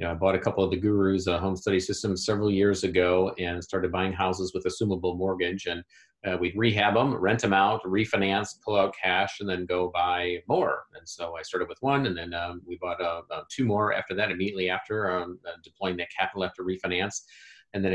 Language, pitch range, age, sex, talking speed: English, 90-100 Hz, 40-59, male, 225 wpm